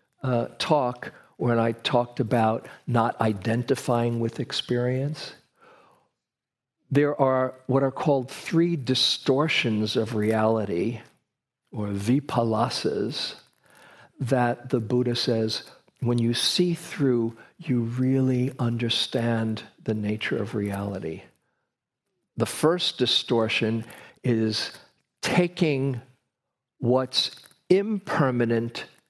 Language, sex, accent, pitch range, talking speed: English, male, American, 115-135 Hz, 90 wpm